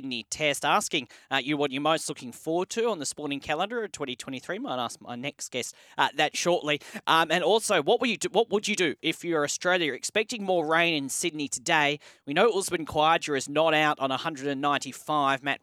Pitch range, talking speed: 130-175 Hz, 210 wpm